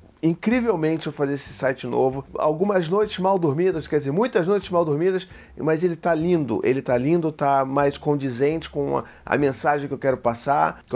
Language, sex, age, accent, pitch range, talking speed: Portuguese, male, 40-59, Brazilian, 140-185 Hz, 185 wpm